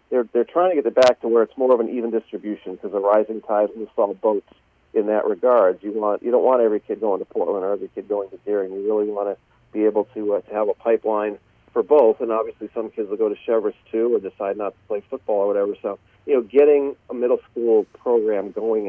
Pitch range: 105-135 Hz